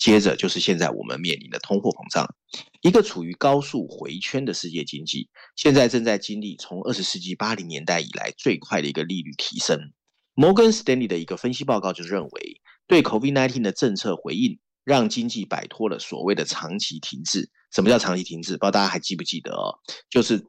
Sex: male